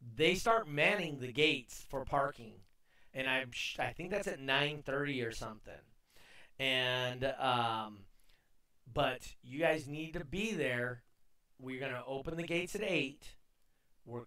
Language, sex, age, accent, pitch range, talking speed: English, male, 30-49, American, 120-160 Hz, 145 wpm